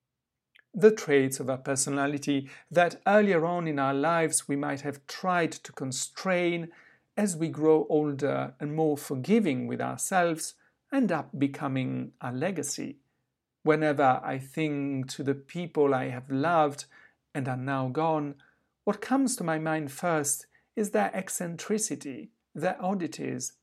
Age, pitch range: 50-69, 135-175 Hz